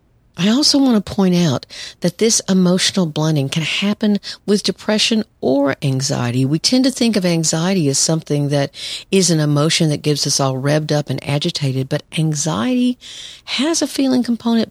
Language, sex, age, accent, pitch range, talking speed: English, female, 50-69, American, 135-175 Hz, 170 wpm